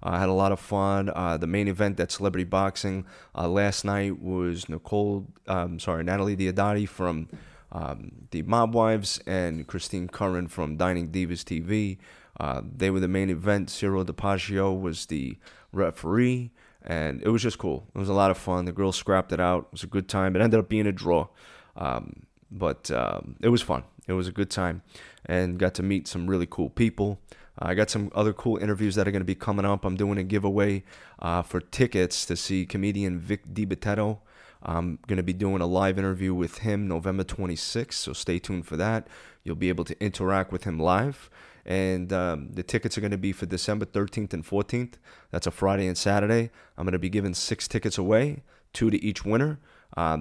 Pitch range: 90-105 Hz